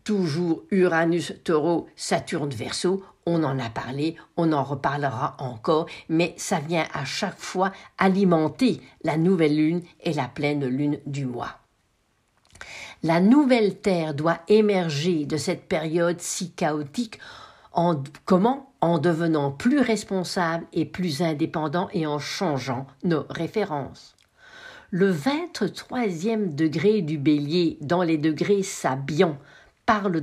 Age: 60-79